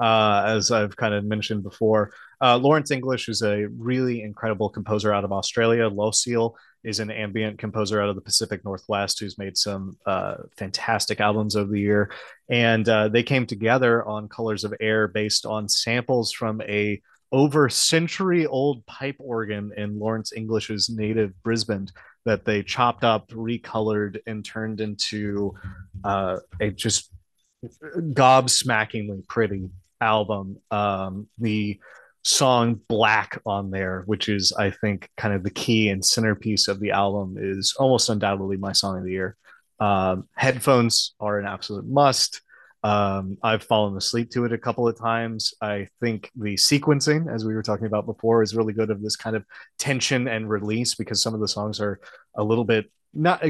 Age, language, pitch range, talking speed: 30-49, English, 105-115 Hz, 165 wpm